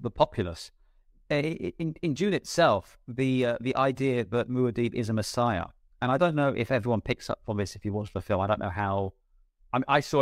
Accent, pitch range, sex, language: British, 105-130 Hz, male, English